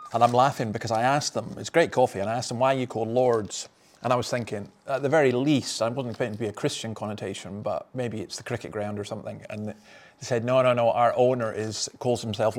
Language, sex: English, male